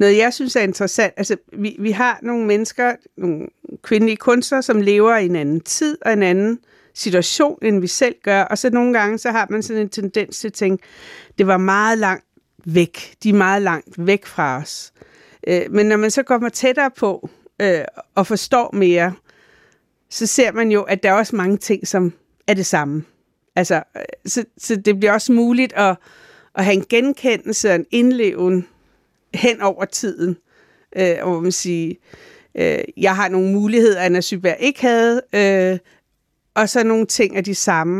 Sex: female